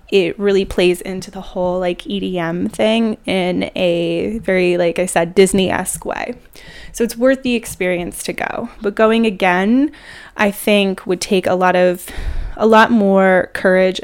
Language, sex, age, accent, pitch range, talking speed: English, female, 20-39, American, 185-225 Hz, 165 wpm